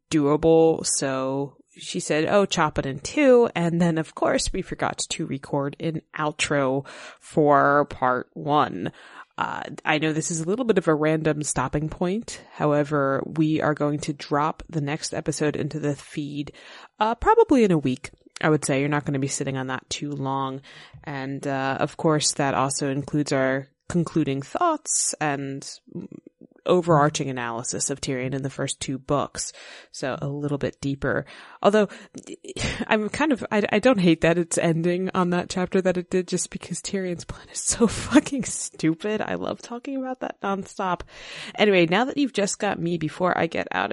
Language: English